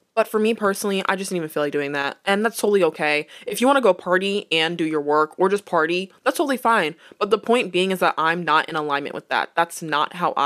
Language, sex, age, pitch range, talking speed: English, female, 20-39, 155-195 Hz, 270 wpm